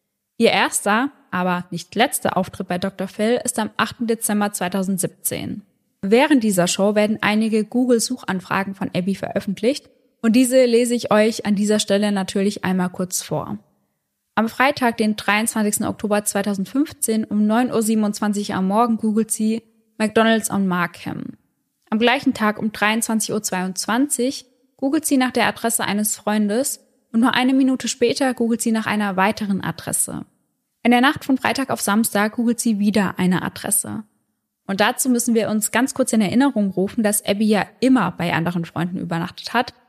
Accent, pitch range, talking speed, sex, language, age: German, 195-240 Hz, 160 wpm, female, German, 20-39